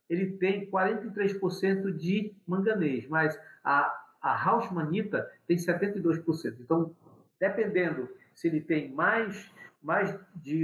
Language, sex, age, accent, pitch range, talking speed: Portuguese, male, 50-69, Brazilian, 140-190 Hz, 105 wpm